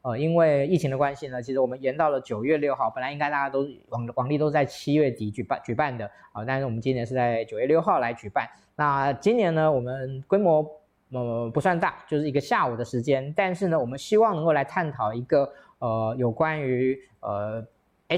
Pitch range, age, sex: 120-160 Hz, 20-39, male